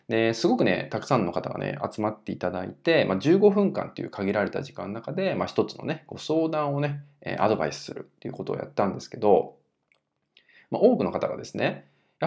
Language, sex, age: Japanese, male, 20-39